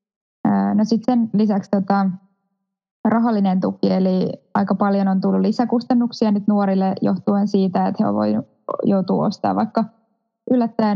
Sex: female